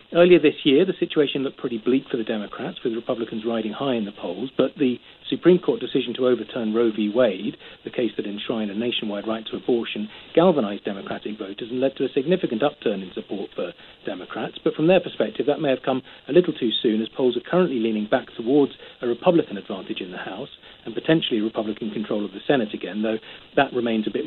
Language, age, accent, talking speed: English, 40-59, British, 220 wpm